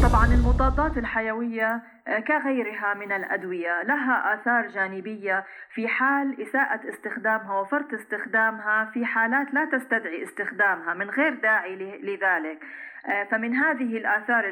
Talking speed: 110 wpm